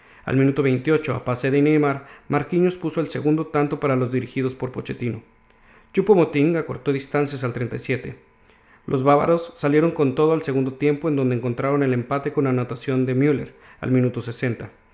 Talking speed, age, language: 175 wpm, 40-59, Spanish